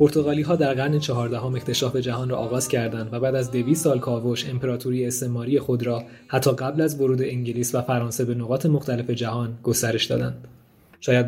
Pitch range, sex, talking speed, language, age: 120-130 Hz, male, 175 wpm, Persian, 20-39